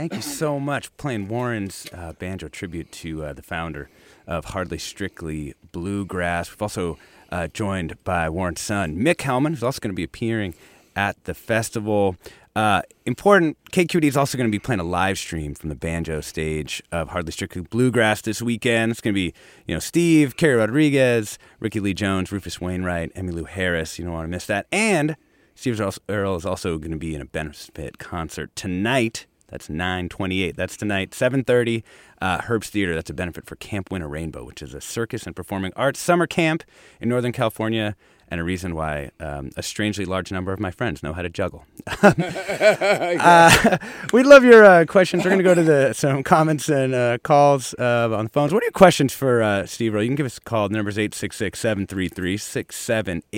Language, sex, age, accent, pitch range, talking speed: English, male, 30-49, American, 90-130 Hz, 195 wpm